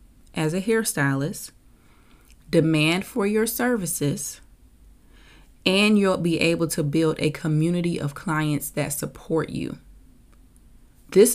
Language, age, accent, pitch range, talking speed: English, 20-39, American, 150-185 Hz, 110 wpm